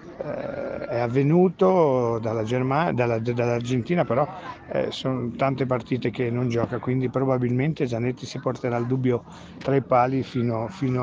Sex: male